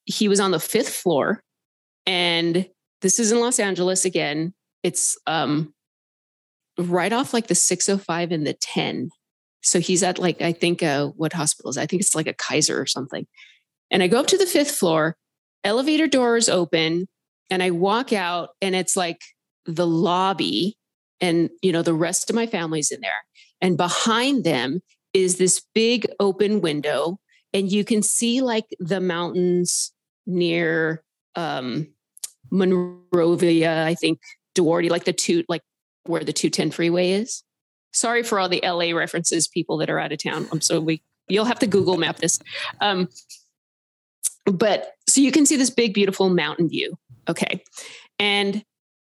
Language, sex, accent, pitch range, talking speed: English, female, American, 170-205 Hz, 165 wpm